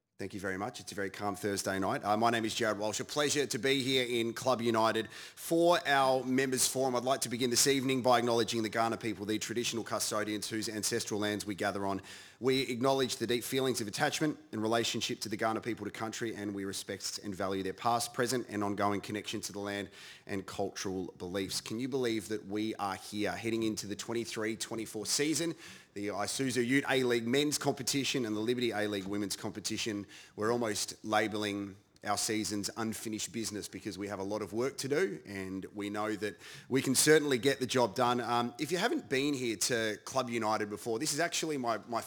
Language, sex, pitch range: English, male, 105-125 Hz